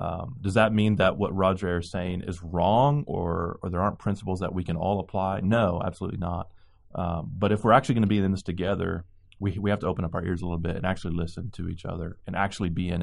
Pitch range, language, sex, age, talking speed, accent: 90-105 Hz, English, male, 30-49, 260 wpm, American